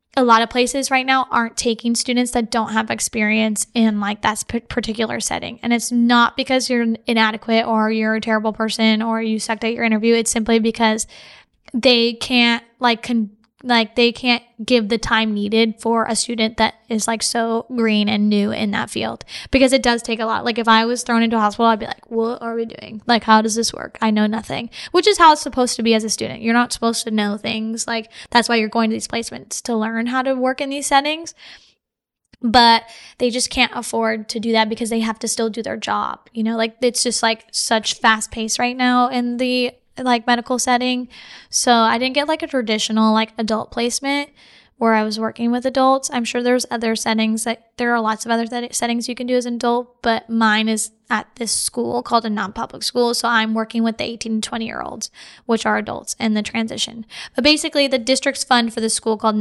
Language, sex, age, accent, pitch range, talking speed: English, female, 10-29, American, 220-245 Hz, 225 wpm